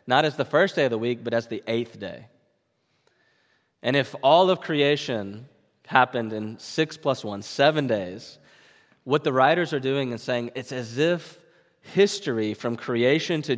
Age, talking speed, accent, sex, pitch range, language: 20-39, 170 wpm, American, male, 115-145 Hz, English